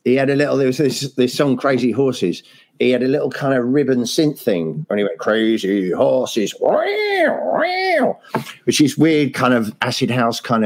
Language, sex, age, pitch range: English, male, 40-59, 100-135 Hz